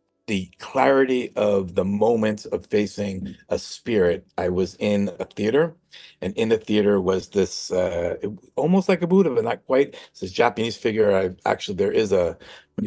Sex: male